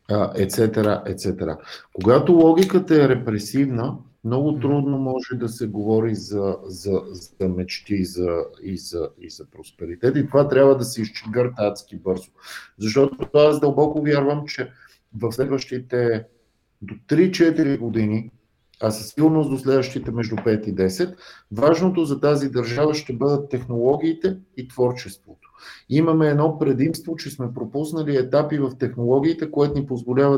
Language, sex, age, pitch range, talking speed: English, male, 50-69, 110-150 Hz, 140 wpm